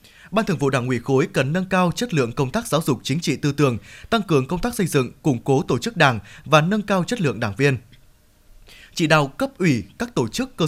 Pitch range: 130-175 Hz